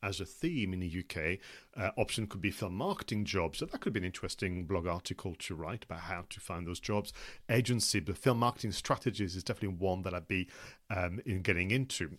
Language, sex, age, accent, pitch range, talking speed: English, male, 40-59, British, 95-120 Hz, 215 wpm